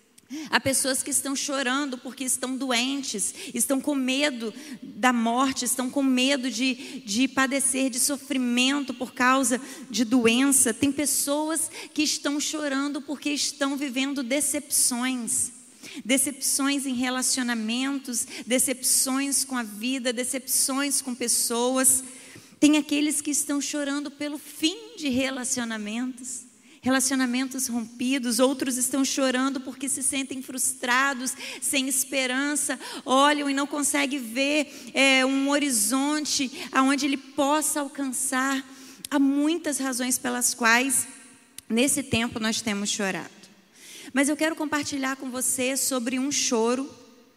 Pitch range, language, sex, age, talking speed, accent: 250-285 Hz, Portuguese, female, 30-49, 120 wpm, Brazilian